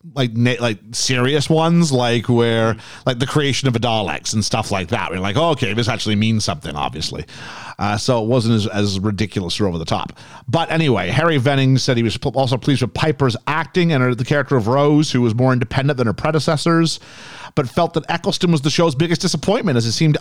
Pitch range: 115-155 Hz